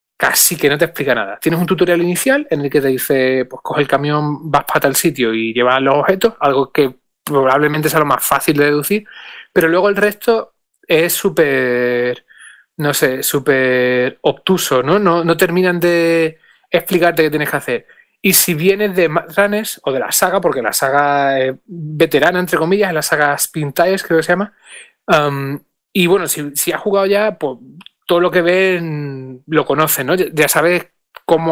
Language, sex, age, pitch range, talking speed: Spanish, male, 30-49, 145-185 Hz, 190 wpm